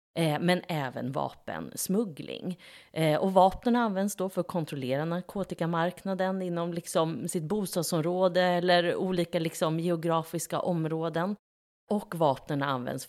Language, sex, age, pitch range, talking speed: Swedish, female, 30-49, 130-180 Hz, 110 wpm